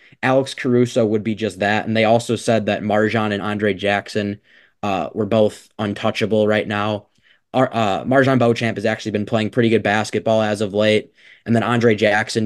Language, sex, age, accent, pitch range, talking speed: English, male, 20-39, American, 105-120 Hz, 185 wpm